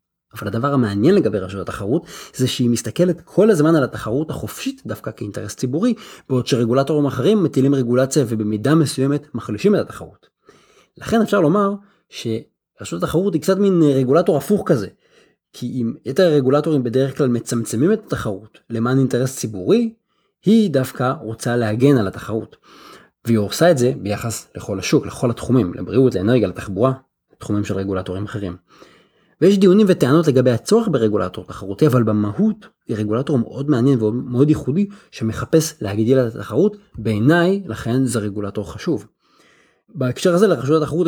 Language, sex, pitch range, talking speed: Hebrew, male, 115-160 Hz, 140 wpm